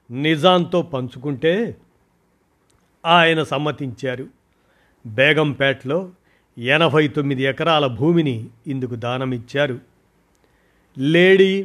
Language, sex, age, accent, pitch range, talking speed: Telugu, male, 50-69, native, 130-160 Hz, 60 wpm